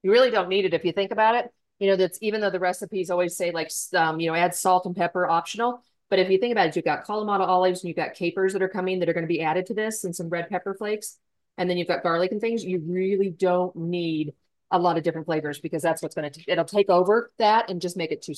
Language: English